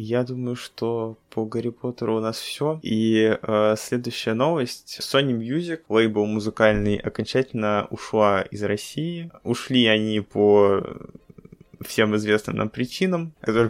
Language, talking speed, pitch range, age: Russian, 125 wpm, 105-125 Hz, 20-39